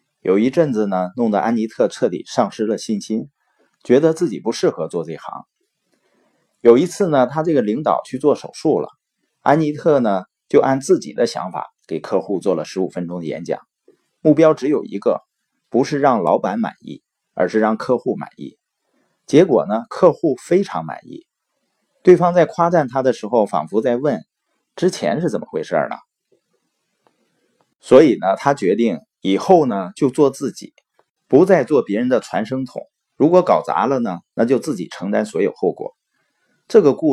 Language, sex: Chinese, male